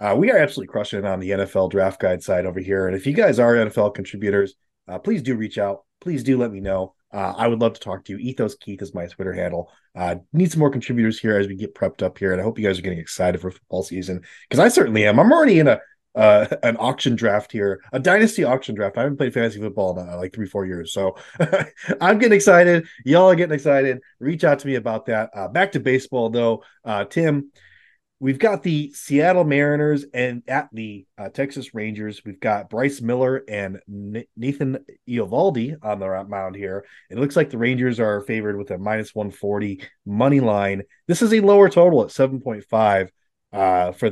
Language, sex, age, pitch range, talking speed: English, male, 30-49, 100-140 Hz, 220 wpm